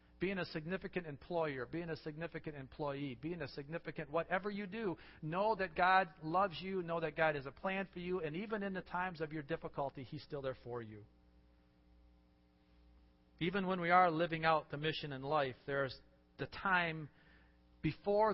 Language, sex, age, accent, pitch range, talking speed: English, male, 40-59, American, 120-170 Hz, 175 wpm